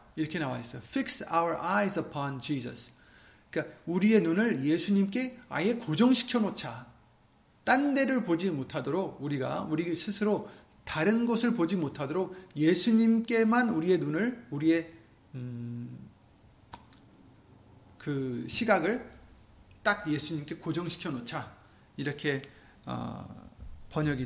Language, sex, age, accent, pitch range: Korean, male, 40-59, native, 125-195 Hz